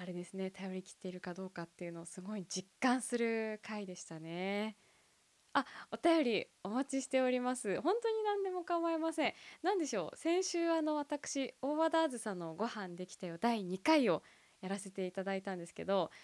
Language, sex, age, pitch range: Japanese, female, 20-39, 195-285 Hz